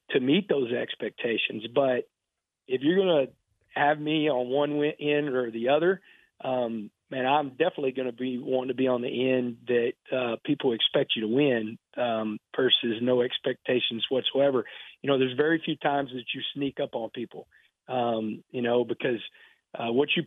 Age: 40-59